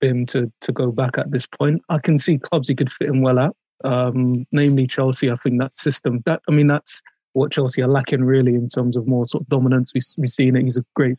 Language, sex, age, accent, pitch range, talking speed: English, male, 20-39, British, 125-140 Hz, 255 wpm